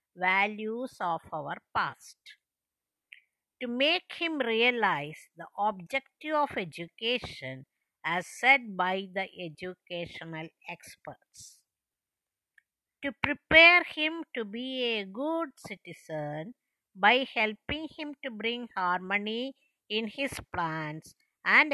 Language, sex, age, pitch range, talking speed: English, female, 50-69, 180-270 Hz, 100 wpm